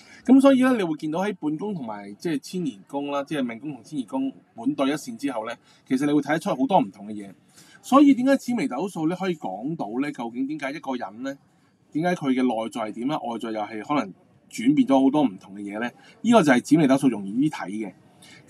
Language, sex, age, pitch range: Chinese, male, 20-39, 130-195 Hz